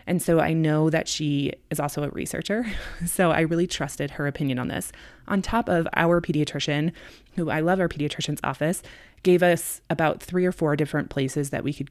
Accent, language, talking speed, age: American, English, 200 wpm, 20-39